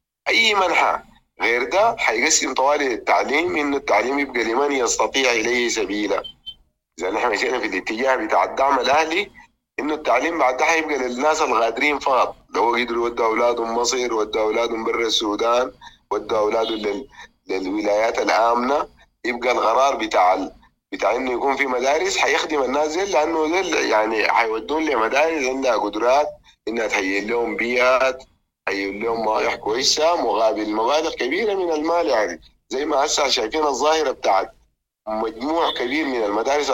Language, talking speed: English, 140 wpm